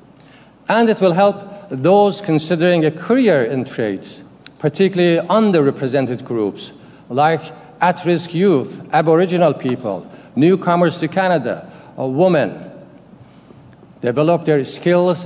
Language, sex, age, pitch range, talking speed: English, male, 60-79, 135-175 Hz, 100 wpm